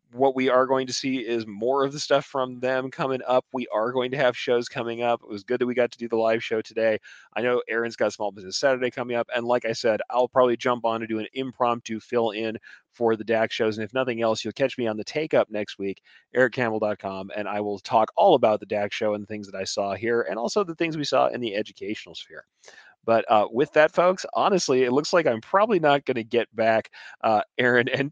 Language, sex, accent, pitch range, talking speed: English, male, American, 110-130 Hz, 260 wpm